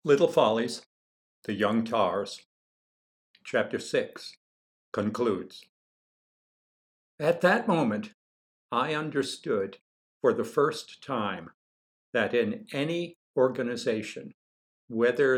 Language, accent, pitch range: English, American, 100-140 Hz